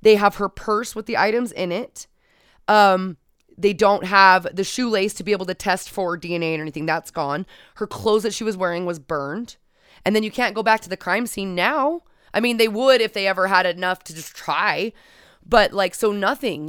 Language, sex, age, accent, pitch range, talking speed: English, female, 20-39, American, 175-210 Hz, 220 wpm